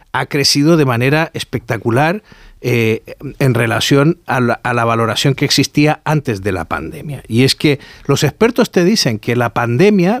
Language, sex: Spanish, male